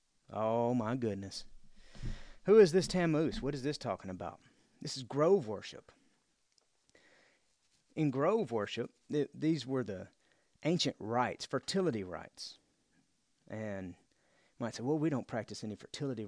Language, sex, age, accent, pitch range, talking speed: English, male, 30-49, American, 115-165 Hz, 135 wpm